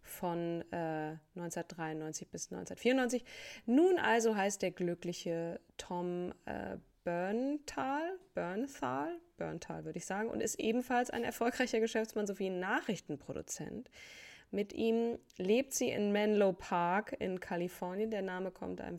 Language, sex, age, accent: German, female, 20-39, German